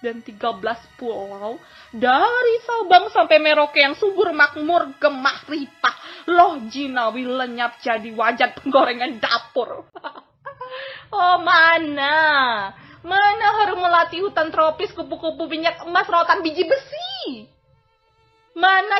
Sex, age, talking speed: female, 20-39, 105 wpm